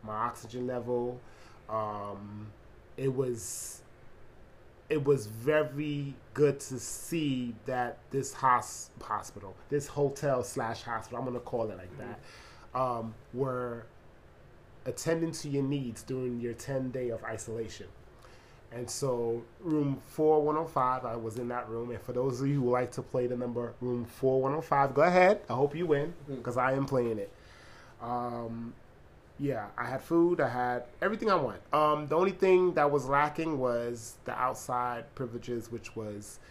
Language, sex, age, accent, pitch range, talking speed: English, male, 20-39, American, 115-145 Hz, 155 wpm